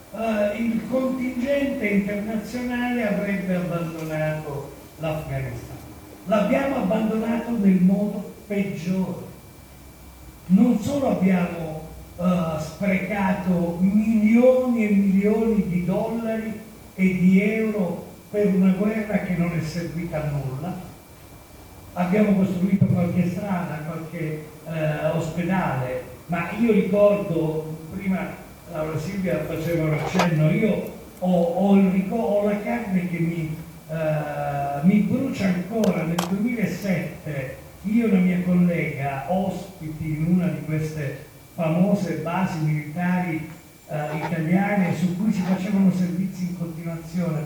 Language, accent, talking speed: Italian, native, 110 wpm